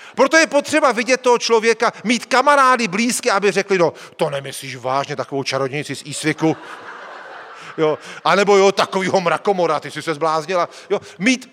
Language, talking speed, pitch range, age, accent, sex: Czech, 155 wpm, 170-245 Hz, 40-59, native, male